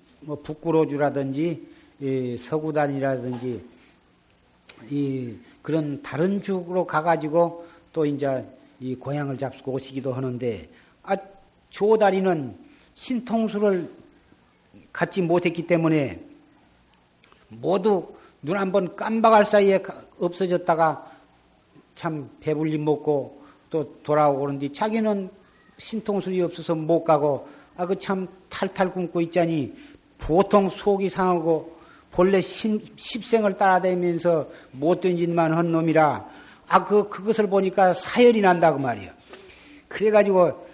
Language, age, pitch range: Korean, 50-69, 150-200 Hz